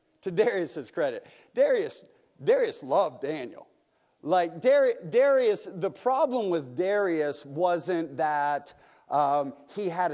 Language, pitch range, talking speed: English, 130-160 Hz, 120 wpm